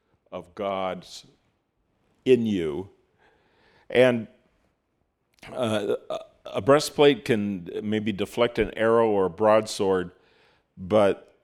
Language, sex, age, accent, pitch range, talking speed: English, male, 50-69, American, 95-140 Hz, 90 wpm